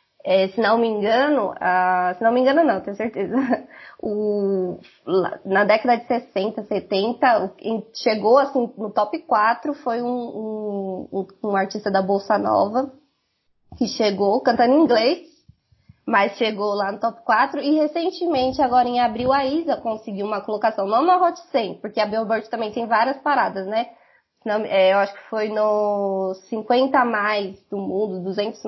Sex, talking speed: female, 160 wpm